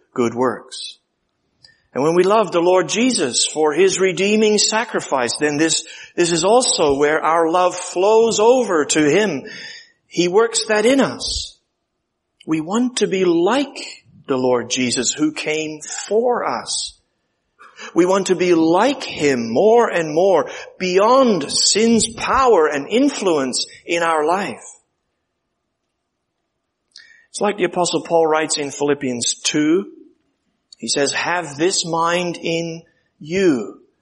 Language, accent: English, American